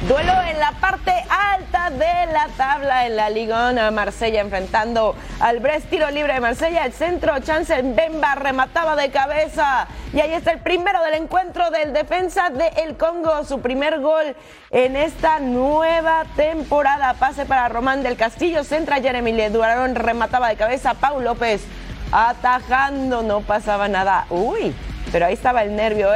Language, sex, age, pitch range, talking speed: Spanish, female, 30-49, 250-325 Hz, 155 wpm